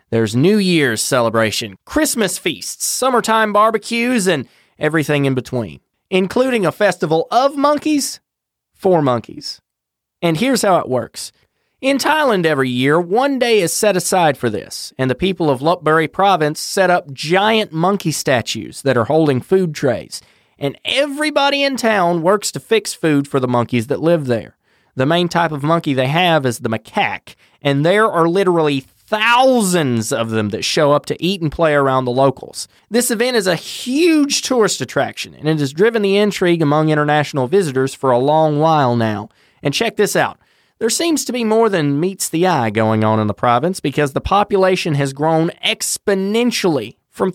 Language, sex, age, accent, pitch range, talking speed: English, male, 30-49, American, 140-210 Hz, 175 wpm